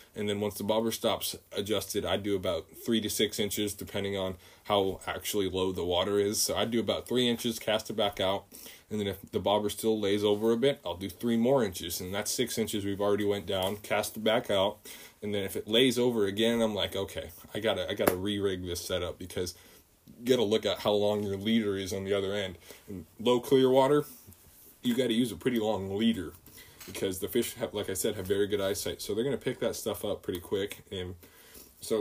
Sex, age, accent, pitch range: male, 20-39, American, 95-110 Hz